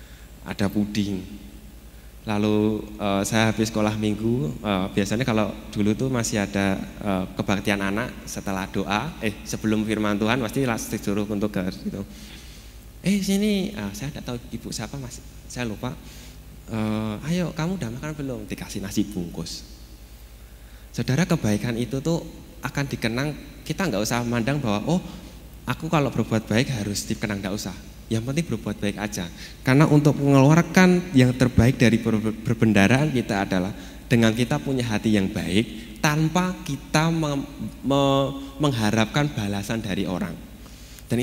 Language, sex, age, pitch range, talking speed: Indonesian, male, 20-39, 100-135 Hz, 145 wpm